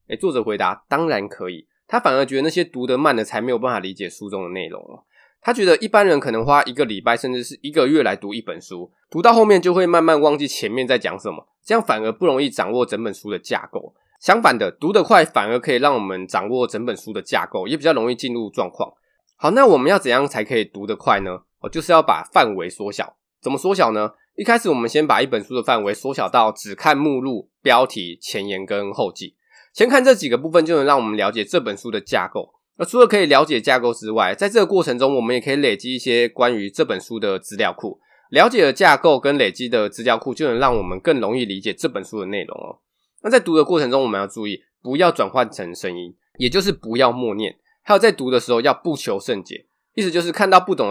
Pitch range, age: 115-170 Hz, 20-39